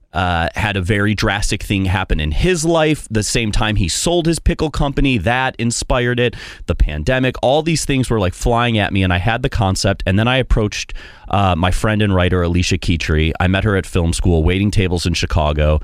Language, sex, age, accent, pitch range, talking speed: English, male, 30-49, American, 80-105 Hz, 215 wpm